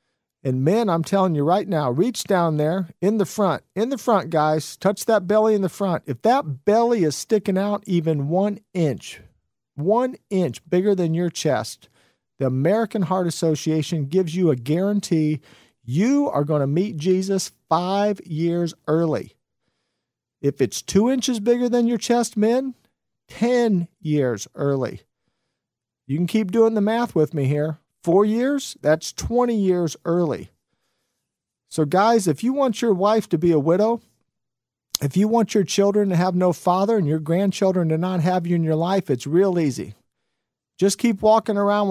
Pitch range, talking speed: 155-205 Hz, 170 wpm